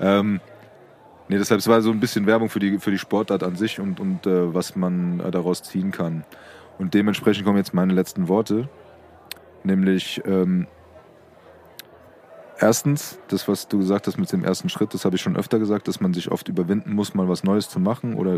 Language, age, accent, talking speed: German, 20-39, German, 200 wpm